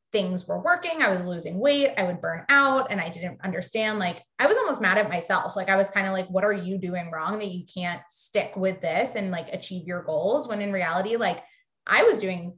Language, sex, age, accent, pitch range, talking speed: English, female, 20-39, American, 175-215 Hz, 245 wpm